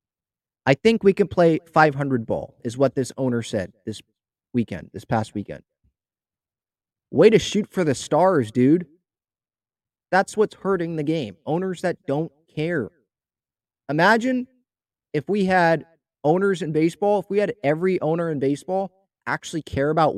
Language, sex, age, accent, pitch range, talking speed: English, male, 30-49, American, 125-180 Hz, 150 wpm